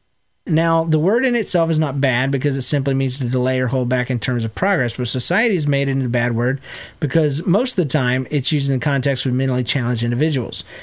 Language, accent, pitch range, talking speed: English, American, 125-155 Hz, 240 wpm